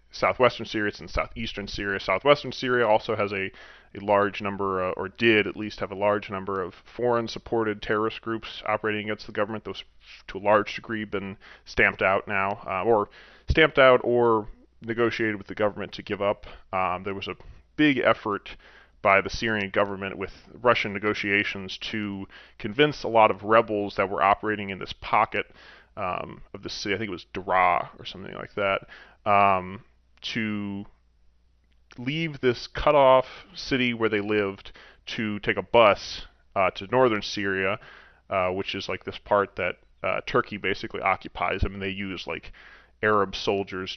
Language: English